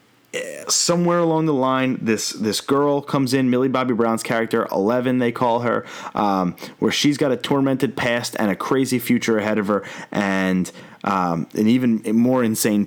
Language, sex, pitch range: English, male, 110-145 Hz